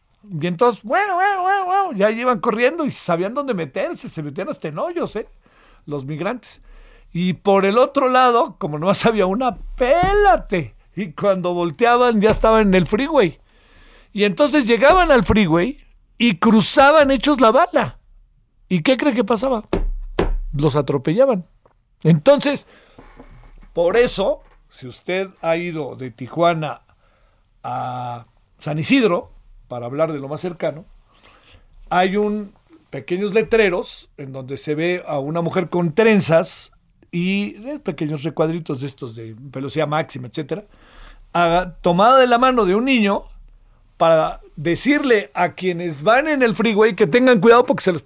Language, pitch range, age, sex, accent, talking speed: Spanish, 155-235 Hz, 50-69, male, Mexican, 145 wpm